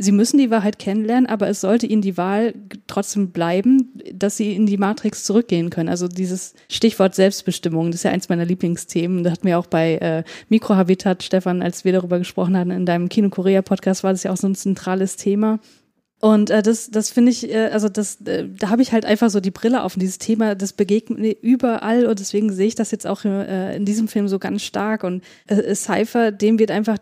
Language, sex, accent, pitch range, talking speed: German, female, German, 195-225 Hz, 225 wpm